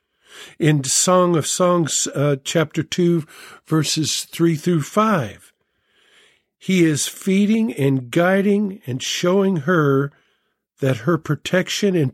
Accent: American